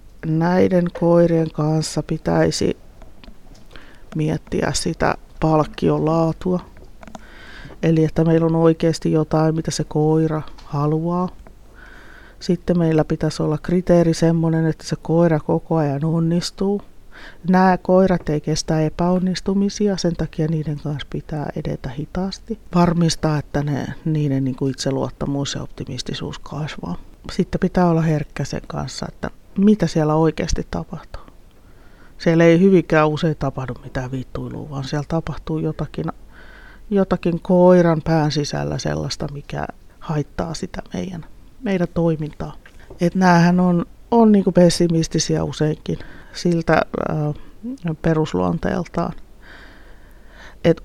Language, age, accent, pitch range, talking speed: Finnish, 30-49, native, 155-180 Hz, 110 wpm